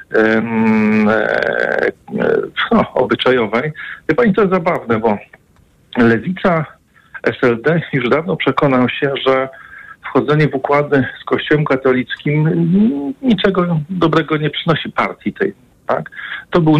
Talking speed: 105 wpm